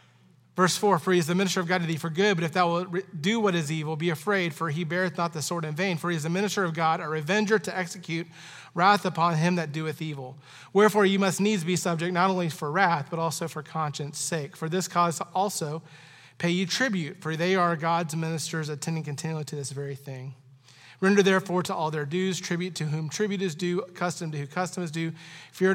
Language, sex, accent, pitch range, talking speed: English, male, American, 155-190 Hz, 235 wpm